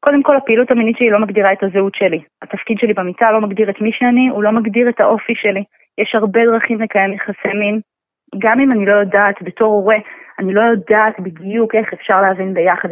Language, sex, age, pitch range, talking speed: Hebrew, female, 20-39, 195-225 Hz, 210 wpm